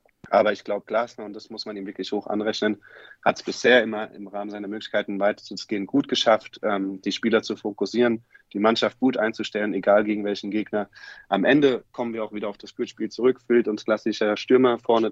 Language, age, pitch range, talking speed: German, 30-49, 100-115 Hz, 205 wpm